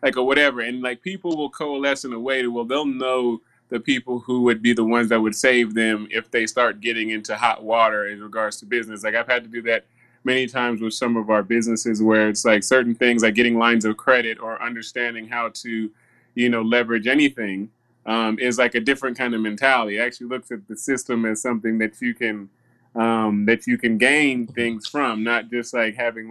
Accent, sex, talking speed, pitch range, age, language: American, male, 225 wpm, 110-125 Hz, 20-39, English